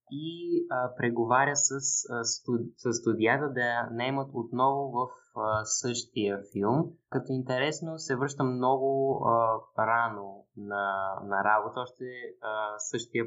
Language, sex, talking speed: Bulgarian, male, 125 wpm